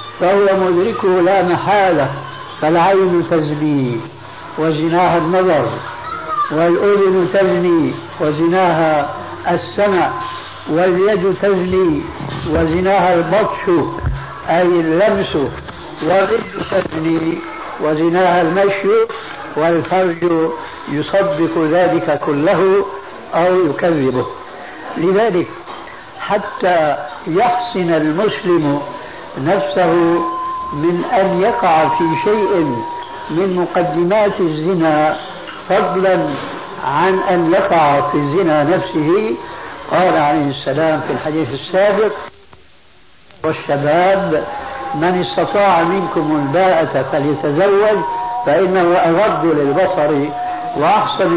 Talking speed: 75 wpm